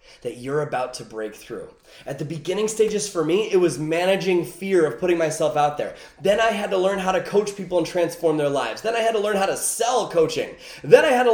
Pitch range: 165-255 Hz